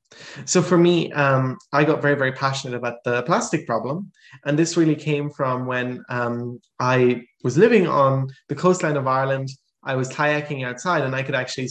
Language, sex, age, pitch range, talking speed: English, male, 20-39, 130-155 Hz, 185 wpm